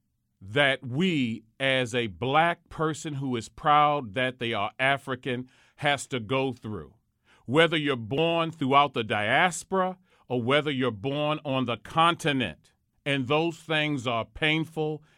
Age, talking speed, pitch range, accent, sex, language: 40-59, 140 wpm, 125-165 Hz, American, male, English